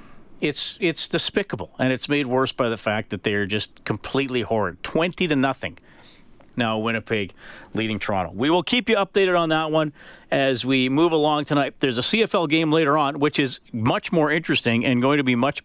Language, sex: English, male